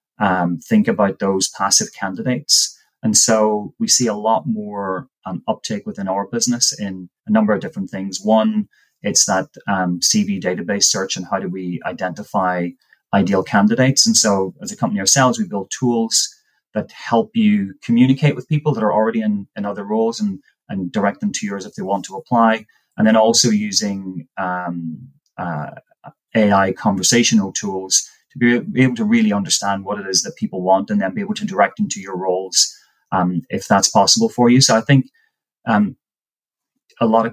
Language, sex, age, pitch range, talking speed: English, male, 30-49, 100-155 Hz, 185 wpm